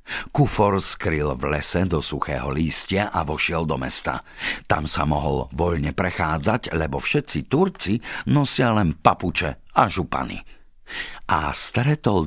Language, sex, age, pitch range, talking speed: Slovak, male, 50-69, 80-110 Hz, 125 wpm